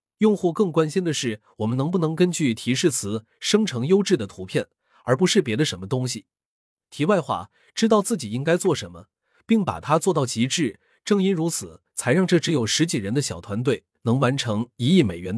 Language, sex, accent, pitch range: Chinese, male, native, 110-180 Hz